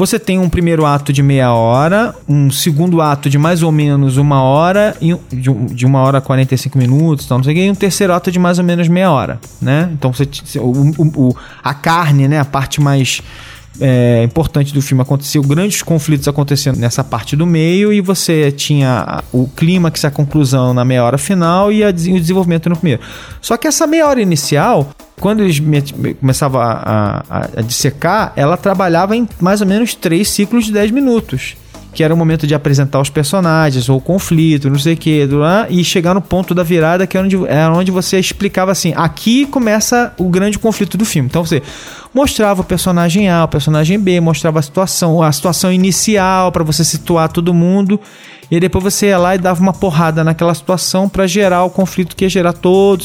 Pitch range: 140-190 Hz